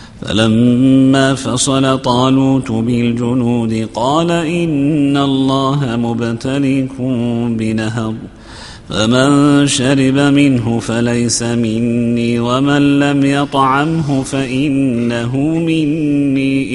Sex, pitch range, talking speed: male, 120-135 Hz, 70 wpm